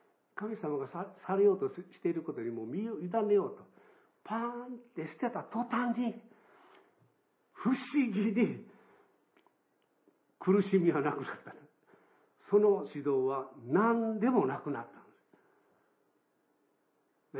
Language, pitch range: Japanese, 150-235 Hz